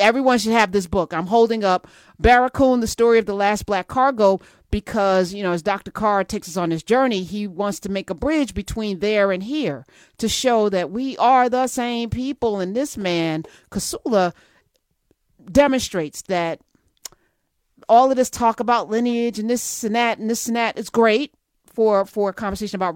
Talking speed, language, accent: 185 wpm, English, American